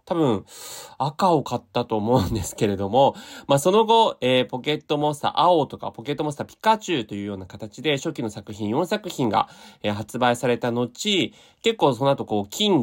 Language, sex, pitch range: Japanese, male, 110-170 Hz